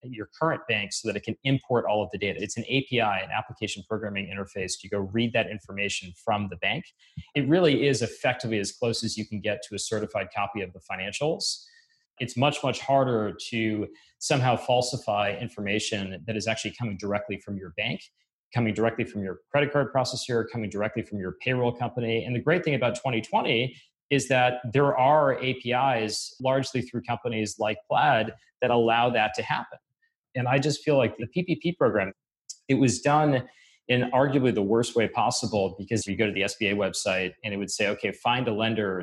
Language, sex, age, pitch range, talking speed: English, male, 30-49, 105-130 Hz, 195 wpm